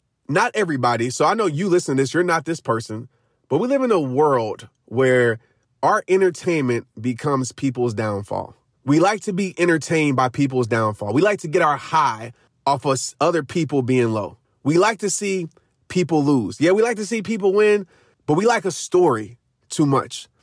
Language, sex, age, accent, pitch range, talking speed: English, male, 30-49, American, 135-190 Hz, 190 wpm